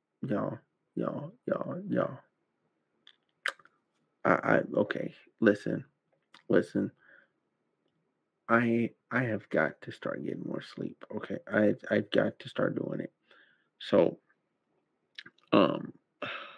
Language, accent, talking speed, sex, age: English, American, 100 wpm, male, 30-49